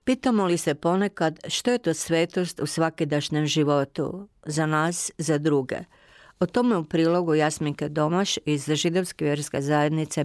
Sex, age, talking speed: female, 50-69, 145 wpm